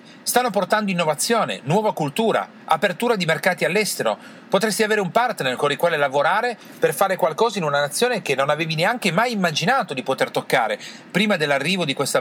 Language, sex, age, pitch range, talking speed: Italian, male, 40-59, 150-220 Hz, 175 wpm